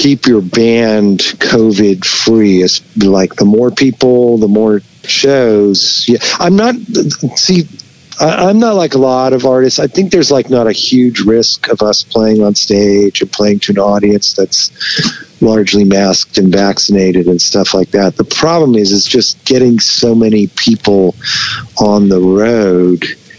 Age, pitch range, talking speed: 50-69, 95-120 Hz, 160 wpm